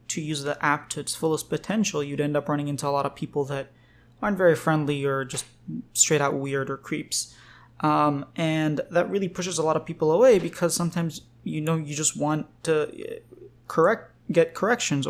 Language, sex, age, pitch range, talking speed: English, male, 20-39, 140-165 Hz, 190 wpm